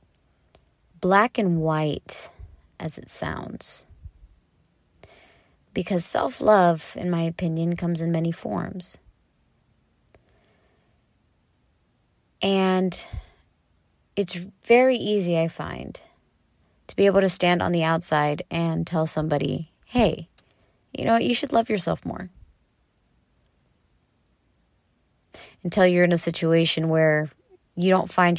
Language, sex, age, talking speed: English, female, 30-49, 105 wpm